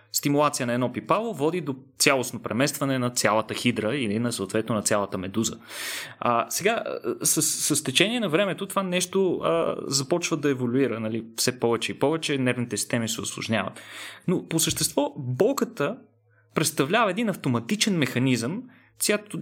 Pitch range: 120-180 Hz